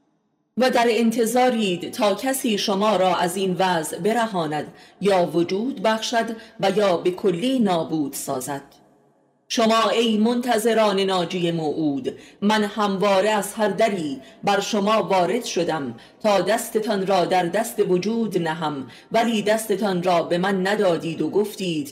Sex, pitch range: female, 170-220 Hz